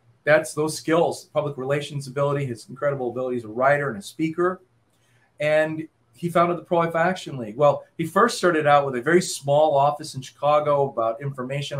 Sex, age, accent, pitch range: male, 30-49, American, 125-155 Hz